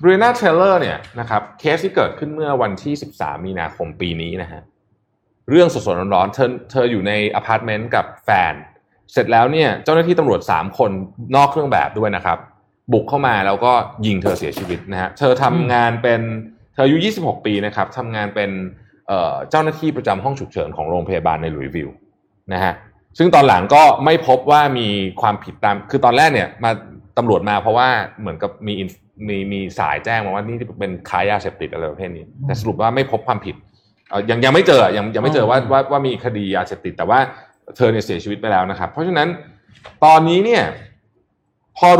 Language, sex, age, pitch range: Thai, male, 20-39, 100-140 Hz